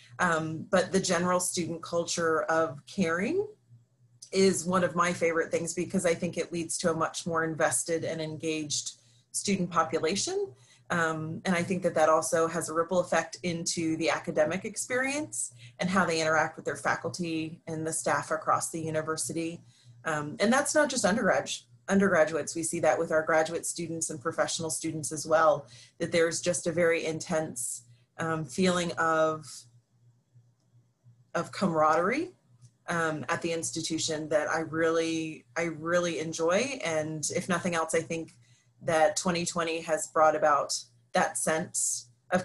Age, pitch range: 30-49, 155-175 Hz